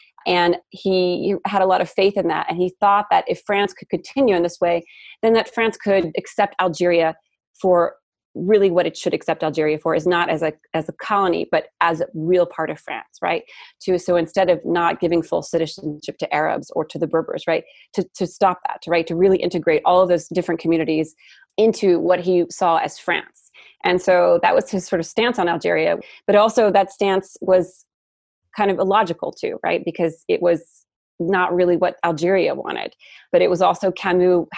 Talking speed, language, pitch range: 205 wpm, English, 170-195 Hz